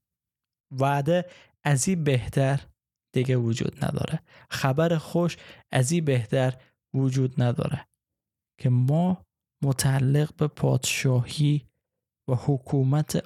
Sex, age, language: male, 20-39, Persian